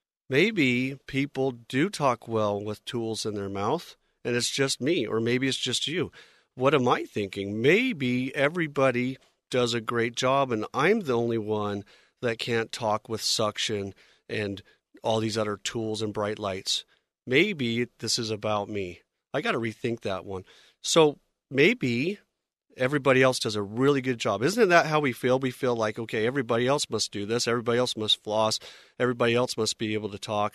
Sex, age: male, 40-59